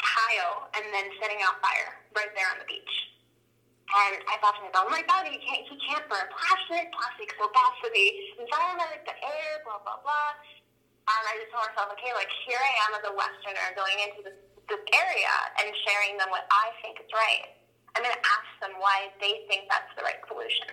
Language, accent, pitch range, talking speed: English, American, 195-250 Hz, 205 wpm